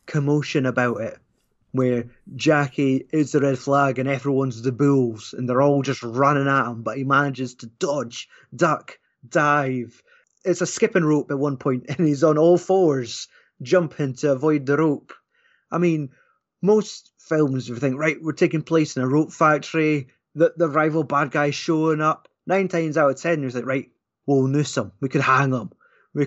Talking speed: 185 wpm